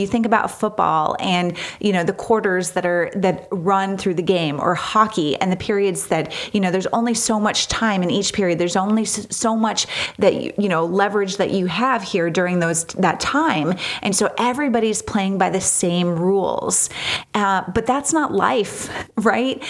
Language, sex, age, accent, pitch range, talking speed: English, female, 30-49, American, 185-230 Hz, 190 wpm